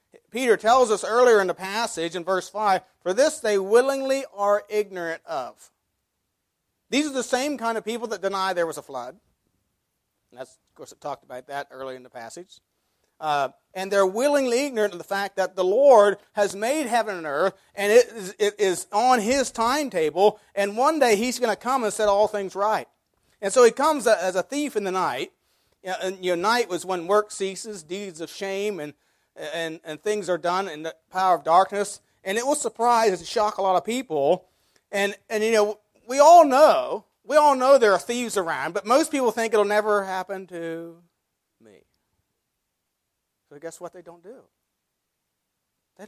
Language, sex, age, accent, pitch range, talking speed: English, male, 40-59, American, 170-230 Hz, 200 wpm